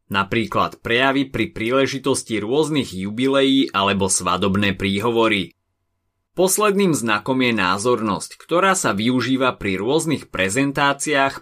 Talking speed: 100 wpm